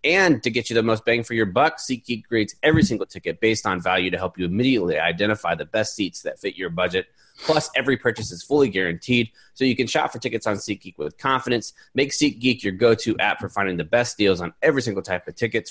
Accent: American